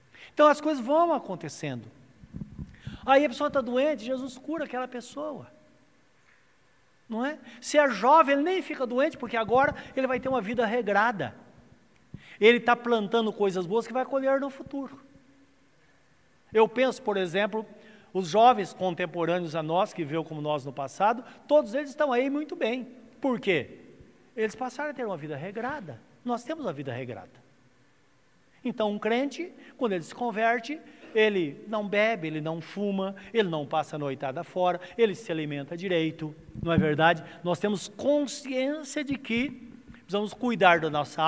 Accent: Brazilian